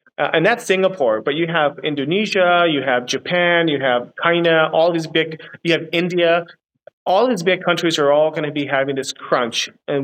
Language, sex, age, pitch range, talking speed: English, male, 30-49, 135-170 Hz, 195 wpm